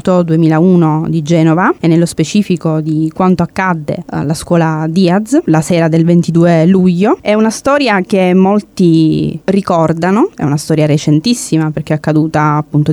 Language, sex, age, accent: Italian, female, 20-39, native